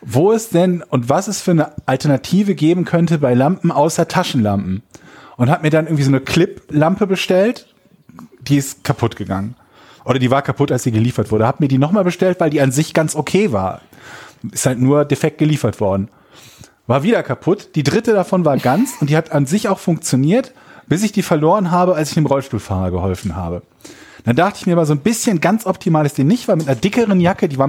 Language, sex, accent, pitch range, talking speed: German, male, German, 125-175 Hz, 215 wpm